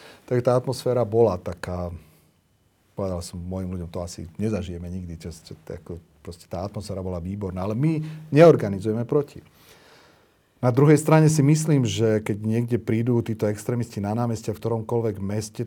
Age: 40-59